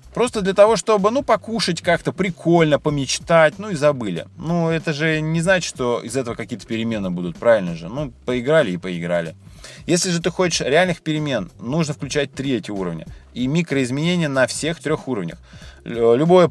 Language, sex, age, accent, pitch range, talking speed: Russian, male, 20-39, native, 120-165 Hz, 170 wpm